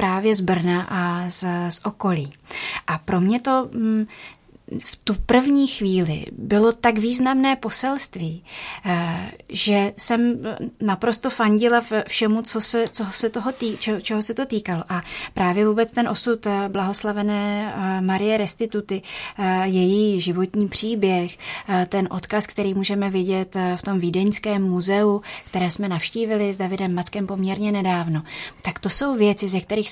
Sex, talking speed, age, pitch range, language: female, 140 wpm, 30-49, 185-215 Hz, Czech